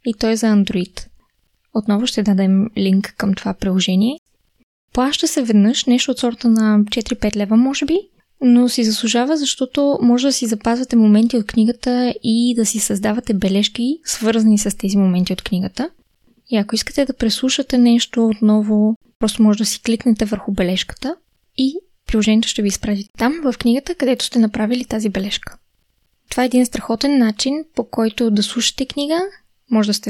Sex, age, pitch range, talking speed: female, 20-39, 205-245 Hz, 170 wpm